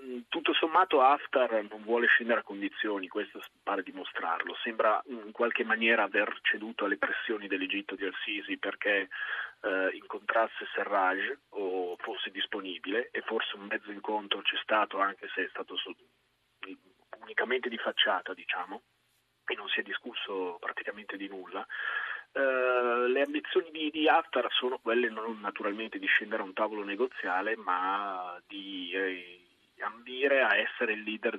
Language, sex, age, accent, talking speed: Italian, male, 30-49, native, 145 wpm